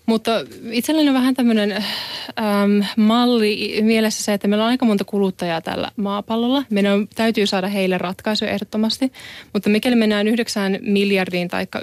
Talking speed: 145 wpm